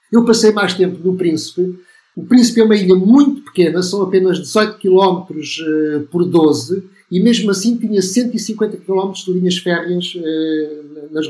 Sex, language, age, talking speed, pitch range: male, Portuguese, 50-69, 165 wpm, 155-190 Hz